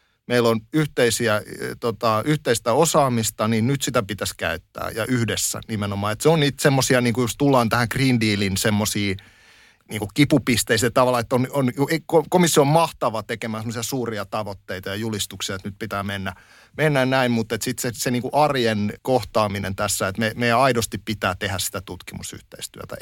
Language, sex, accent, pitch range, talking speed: Finnish, male, native, 110-145 Hz, 160 wpm